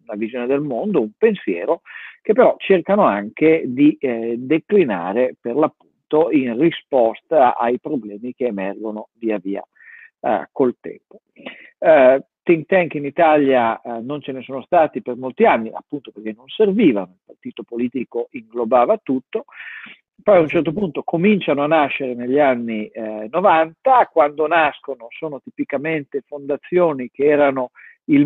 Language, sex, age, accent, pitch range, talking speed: Italian, male, 50-69, native, 120-195 Hz, 145 wpm